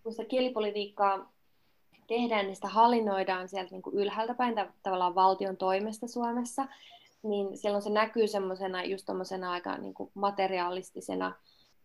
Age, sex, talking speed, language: 20-39, female, 115 wpm, Finnish